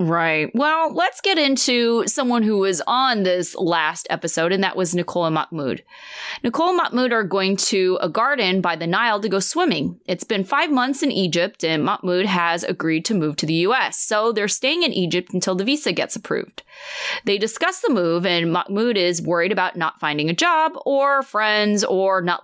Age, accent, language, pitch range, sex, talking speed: 20-39, American, English, 180-275 Hz, female, 200 wpm